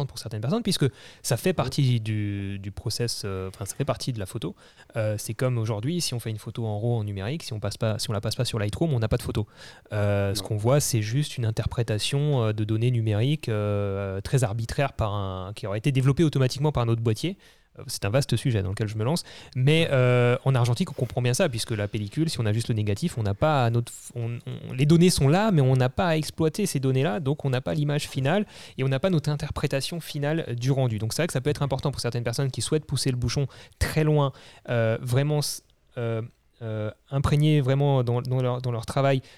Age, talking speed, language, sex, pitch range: 30-49, 250 wpm, French, male, 110-145 Hz